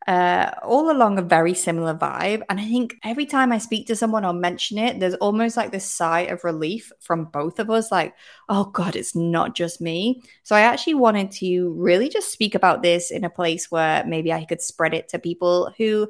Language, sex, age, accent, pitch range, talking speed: English, female, 20-39, British, 165-220 Hz, 220 wpm